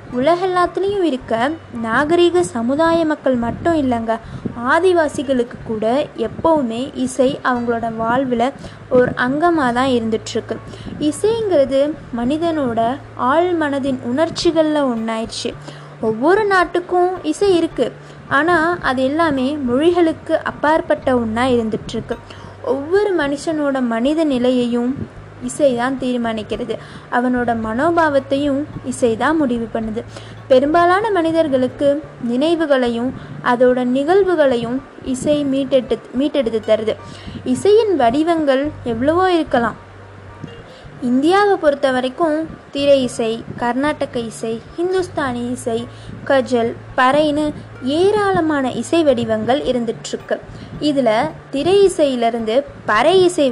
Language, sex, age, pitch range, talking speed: Tamil, female, 20-39, 245-320 Hz, 85 wpm